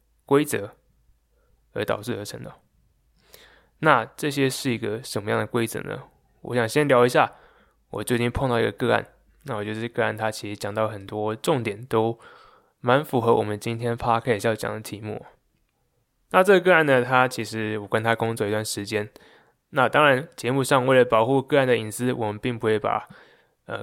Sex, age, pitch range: male, 20-39, 105-130 Hz